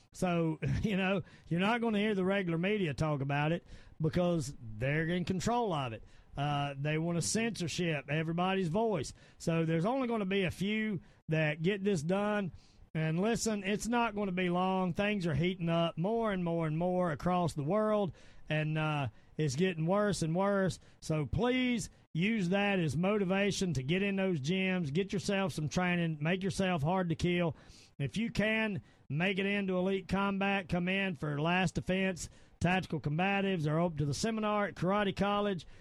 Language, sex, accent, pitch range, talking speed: English, male, American, 155-195 Hz, 185 wpm